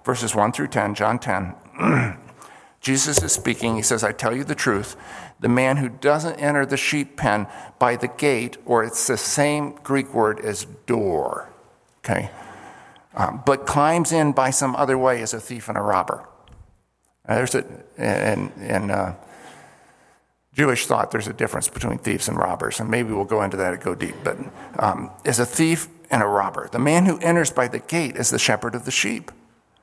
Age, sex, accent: 50-69, male, American